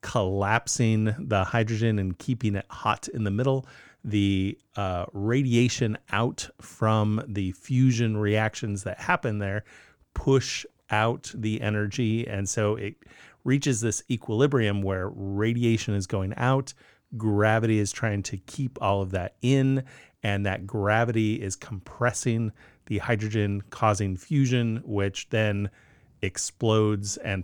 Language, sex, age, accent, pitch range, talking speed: English, male, 30-49, American, 100-120 Hz, 125 wpm